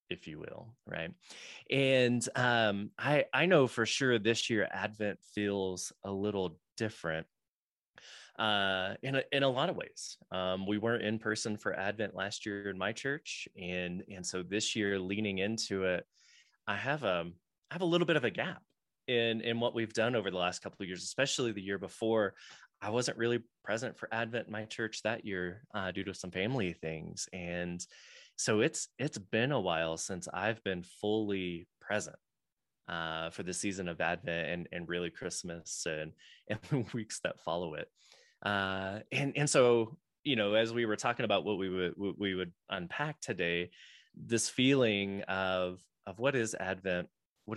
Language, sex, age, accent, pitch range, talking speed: English, male, 20-39, American, 90-115 Hz, 180 wpm